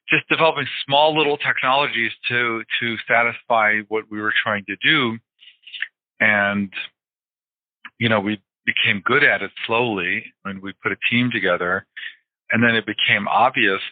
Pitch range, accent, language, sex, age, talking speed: 95-110 Hz, American, English, male, 50-69, 145 wpm